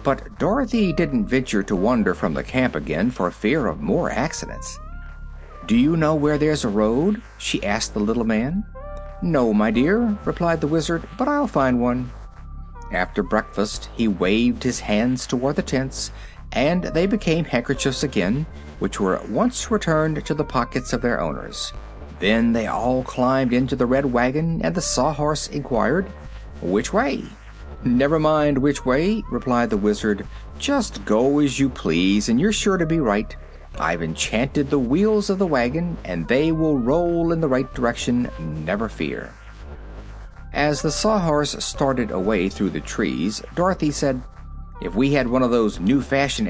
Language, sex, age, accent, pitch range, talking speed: English, male, 50-69, American, 105-165 Hz, 165 wpm